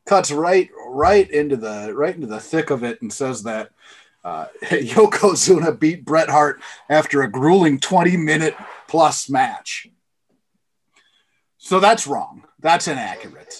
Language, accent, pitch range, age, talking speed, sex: English, American, 120-185 Hz, 30-49, 135 wpm, male